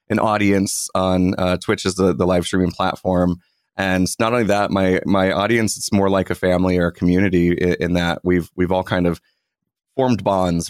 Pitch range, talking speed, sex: 90-100 Hz, 200 wpm, male